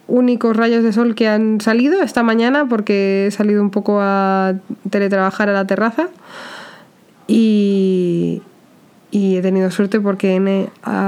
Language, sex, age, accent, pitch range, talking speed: Spanish, female, 20-39, Spanish, 185-220 Hz, 140 wpm